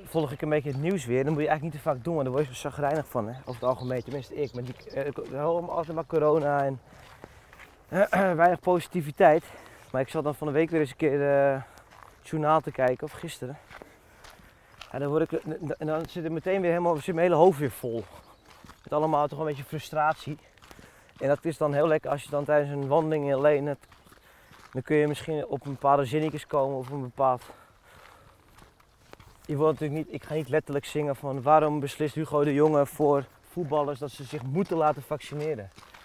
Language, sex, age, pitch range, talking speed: Dutch, male, 20-39, 140-165 Hz, 205 wpm